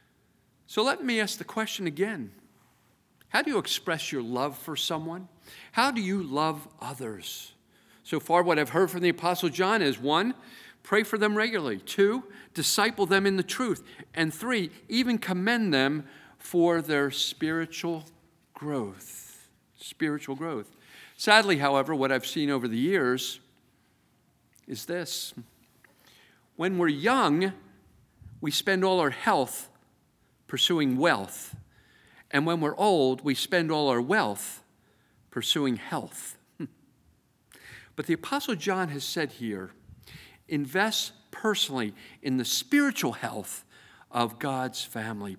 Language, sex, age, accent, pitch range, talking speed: English, male, 50-69, American, 125-185 Hz, 130 wpm